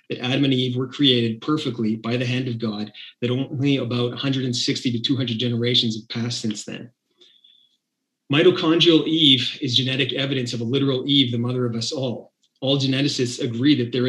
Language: English